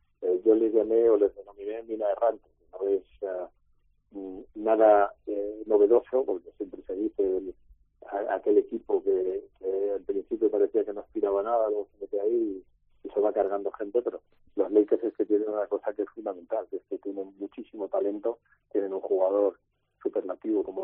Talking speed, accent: 175 wpm, Spanish